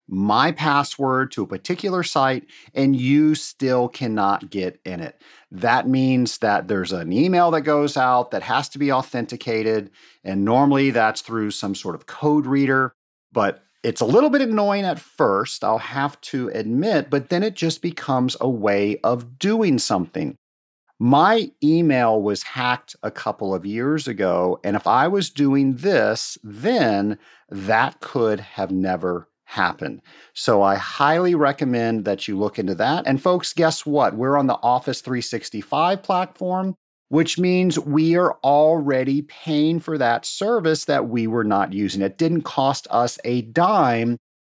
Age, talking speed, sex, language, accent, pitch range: 40-59, 160 wpm, male, English, American, 110-155 Hz